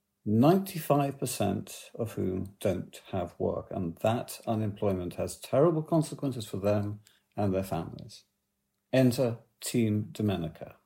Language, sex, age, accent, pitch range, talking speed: English, male, 50-69, British, 95-135 Hz, 110 wpm